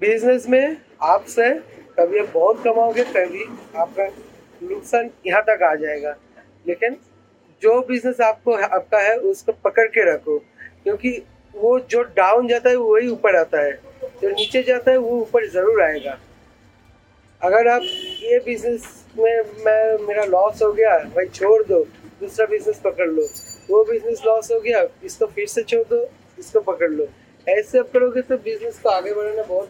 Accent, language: native, Hindi